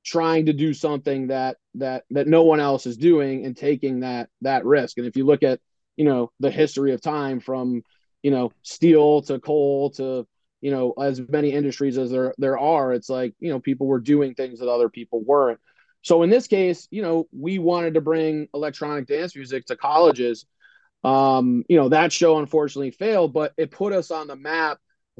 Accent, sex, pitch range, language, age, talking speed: American, male, 135-160 Hz, English, 30-49, 200 wpm